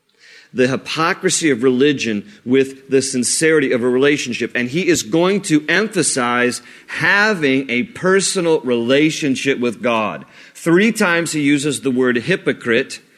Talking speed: 130 wpm